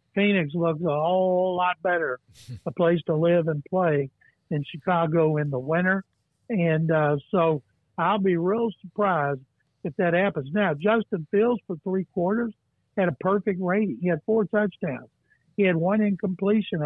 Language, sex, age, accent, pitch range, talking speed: English, male, 60-79, American, 160-205 Hz, 160 wpm